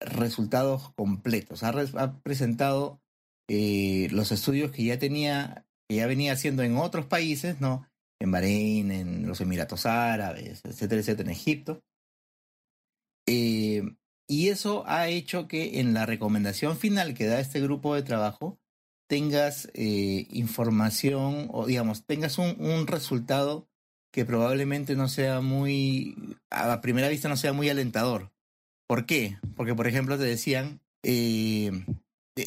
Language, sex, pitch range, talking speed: Spanish, male, 110-145 Hz, 140 wpm